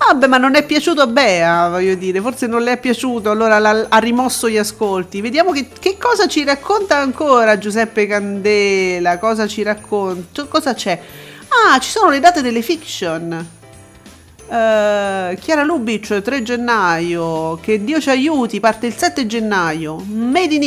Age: 40-59